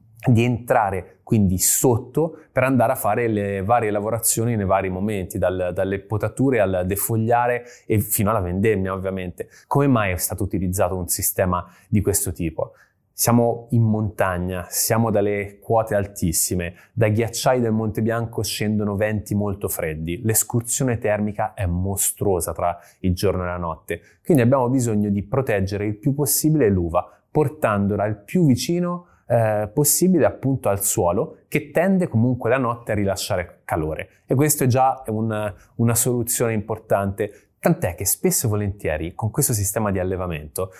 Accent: native